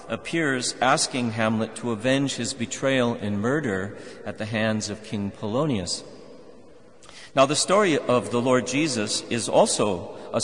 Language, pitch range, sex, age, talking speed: English, 105-135 Hz, male, 50-69, 145 wpm